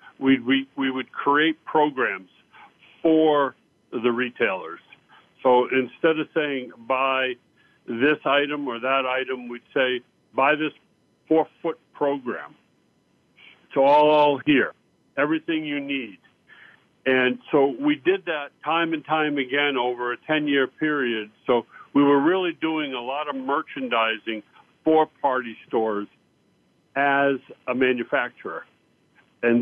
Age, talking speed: 60-79, 120 wpm